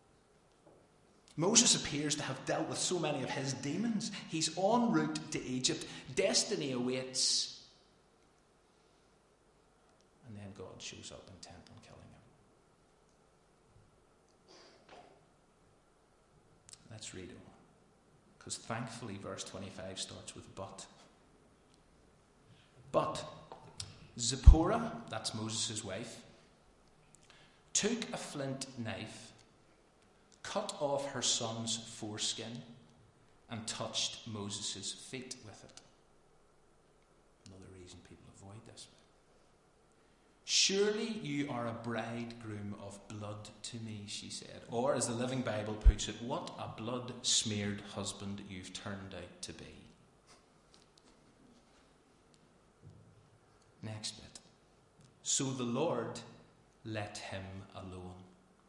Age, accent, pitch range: 30-49, British, 105-130 Hz